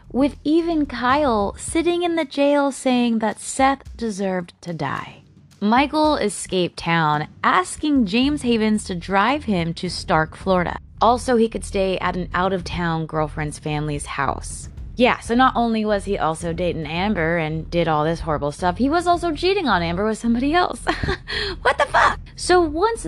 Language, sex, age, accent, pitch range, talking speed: English, female, 20-39, American, 165-240 Hz, 165 wpm